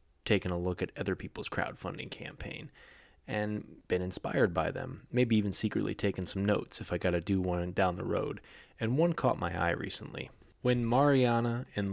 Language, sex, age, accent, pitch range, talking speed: English, male, 20-39, American, 90-105 Hz, 180 wpm